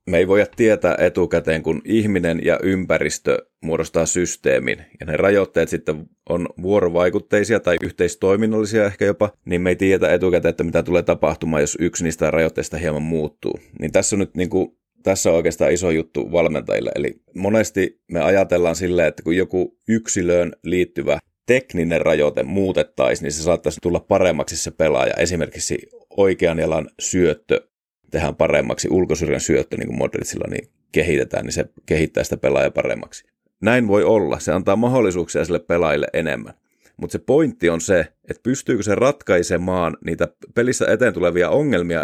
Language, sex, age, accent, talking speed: English, male, 30-49, Finnish, 155 wpm